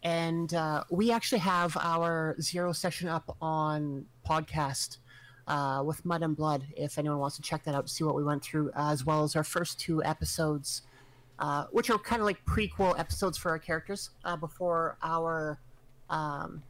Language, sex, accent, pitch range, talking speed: English, male, American, 145-180 Hz, 185 wpm